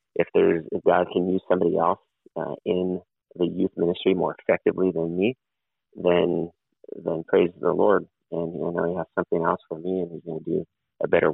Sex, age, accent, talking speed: male, 30-49, American, 195 wpm